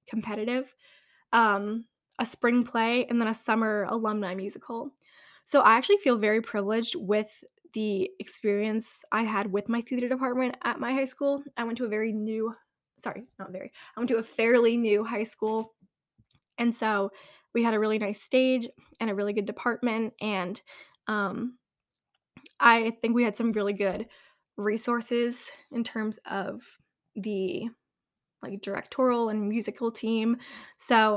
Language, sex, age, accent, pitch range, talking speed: English, female, 10-29, American, 205-240 Hz, 155 wpm